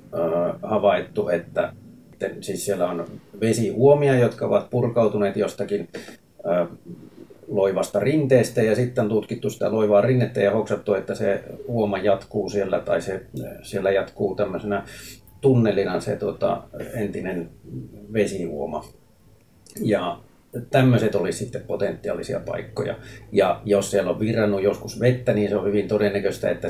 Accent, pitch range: native, 95-110 Hz